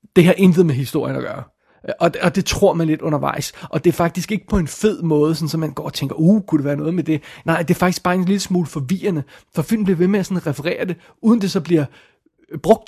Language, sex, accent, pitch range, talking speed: Danish, male, native, 150-180 Hz, 270 wpm